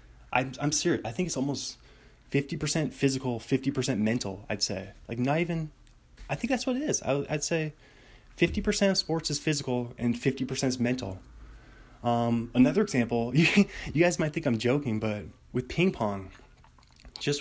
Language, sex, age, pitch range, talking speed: English, male, 20-39, 110-135 Hz, 170 wpm